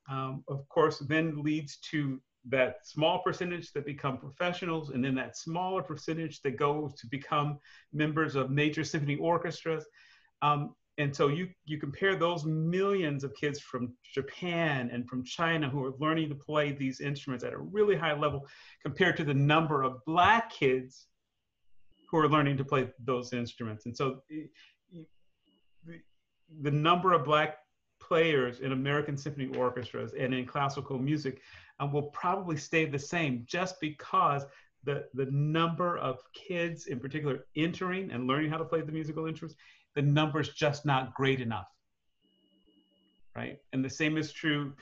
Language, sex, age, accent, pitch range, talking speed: English, male, 40-59, American, 130-160 Hz, 160 wpm